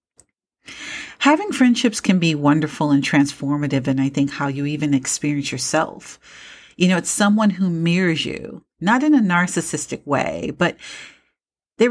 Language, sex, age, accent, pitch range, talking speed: English, female, 40-59, American, 145-195 Hz, 145 wpm